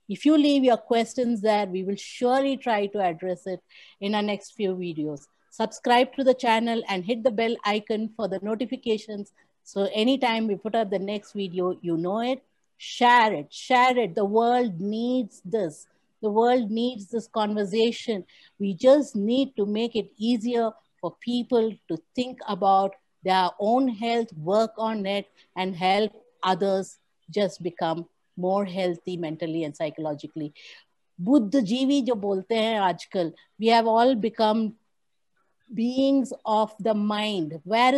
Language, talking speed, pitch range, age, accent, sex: English, 145 wpm, 185-235 Hz, 60-79, Indian, female